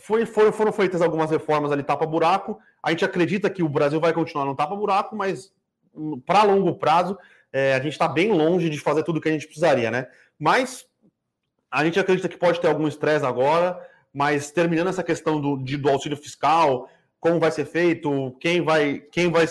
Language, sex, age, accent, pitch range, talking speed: Portuguese, male, 30-49, Brazilian, 145-170 Hz, 185 wpm